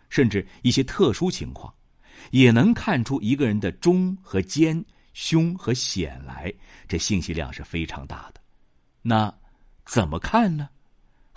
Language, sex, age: Chinese, male, 50-69